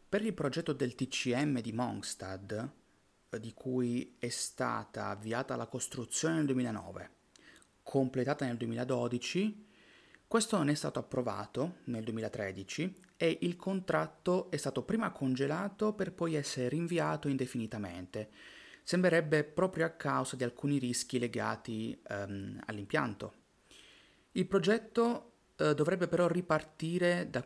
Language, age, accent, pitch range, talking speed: Italian, 30-49, native, 120-165 Hz, 120 wpm